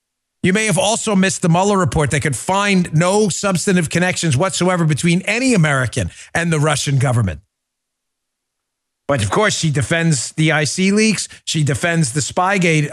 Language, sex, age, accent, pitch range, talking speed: English, male, 40-59, American, 140-185 Hz, 160 wpm